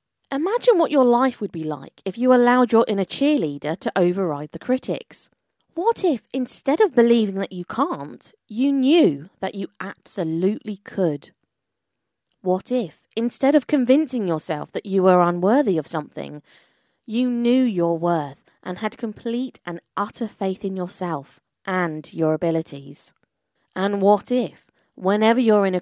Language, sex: English, female